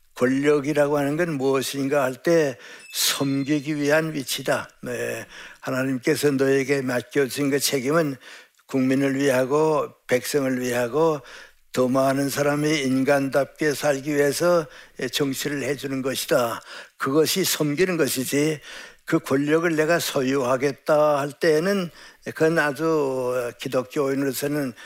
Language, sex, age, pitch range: Korean, male, 60-79, 135-155 Hz